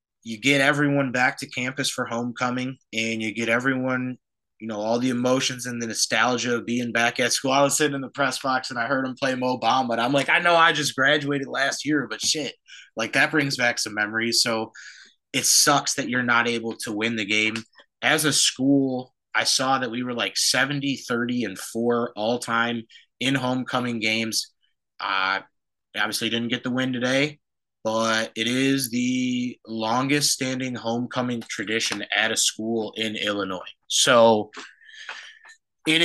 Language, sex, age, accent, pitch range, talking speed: English, male, 20-39, American, 115-135 Hz, 180 wpm